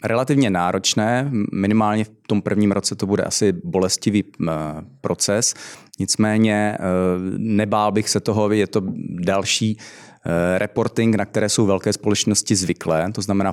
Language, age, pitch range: Czech, 30-49, 95-110 Hz